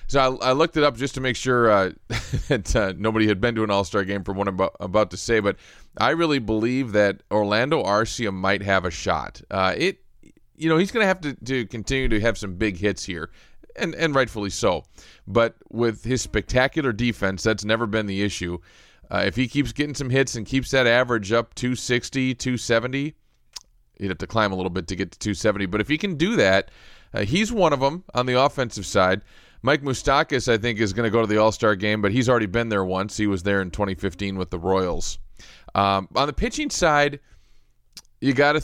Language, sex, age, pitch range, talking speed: English, male, 30-49, 100-125 Hz, 220 wpm